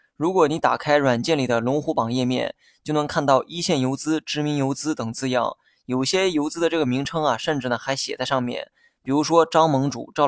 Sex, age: male, 20-39